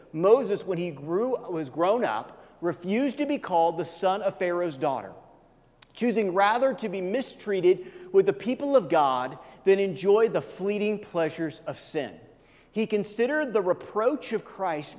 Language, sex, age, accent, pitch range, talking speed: English, male, 40-59, American, 165-230 Hz, 155 wpm